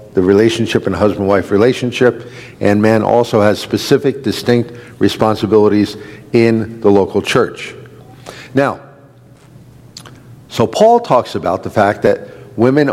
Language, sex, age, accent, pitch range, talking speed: English, male, 50-69, American, 110-135 Hz, 120 wpm